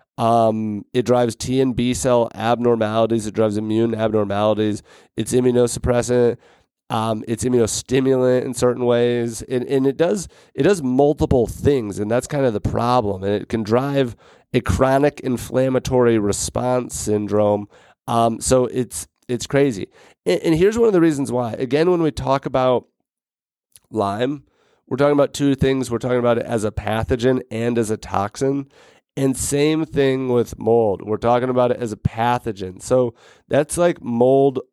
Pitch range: 110-130 Hz